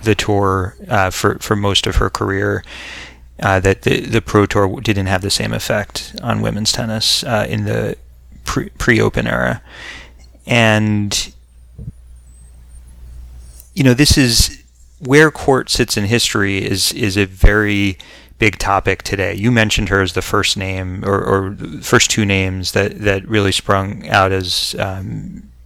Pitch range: 95-105 Hz